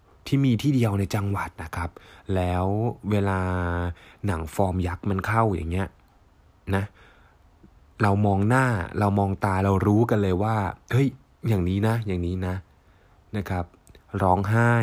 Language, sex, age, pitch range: Thai, male, 20-39, 85-110 Hz